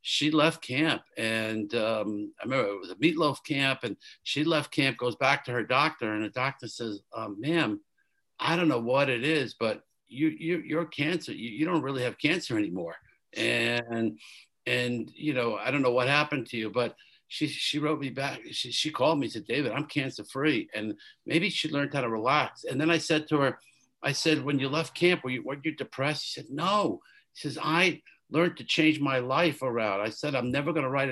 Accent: American